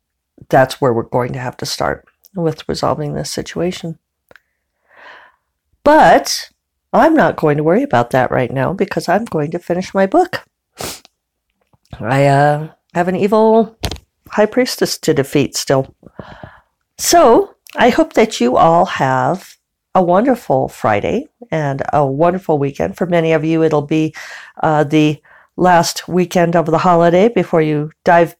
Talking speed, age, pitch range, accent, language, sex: 145 wpm, 50-69, 160-195 Hz, American, English, female